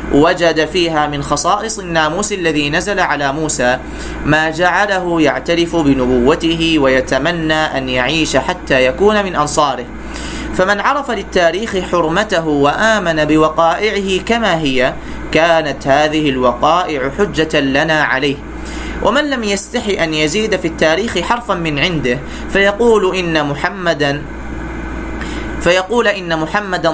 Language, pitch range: Arabic, 145-195 Hz